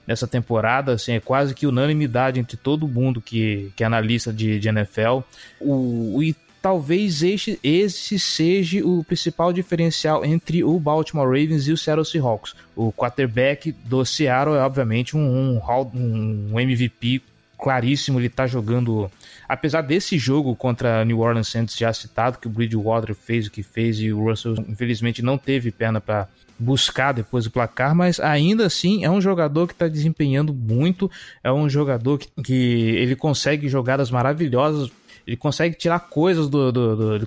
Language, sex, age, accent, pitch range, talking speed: Portuguese, male, 20-39, Brazilian, 120-160 Hz, 170 wpm